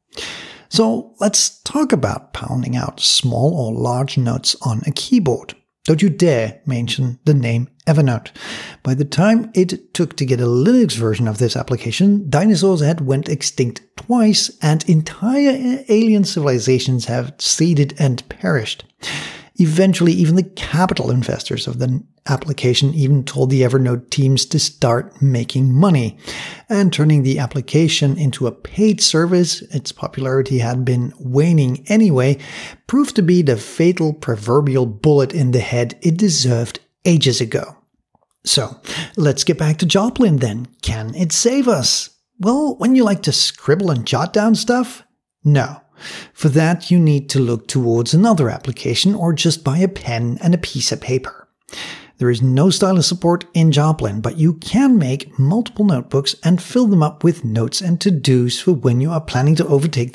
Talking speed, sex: 160 wpm, male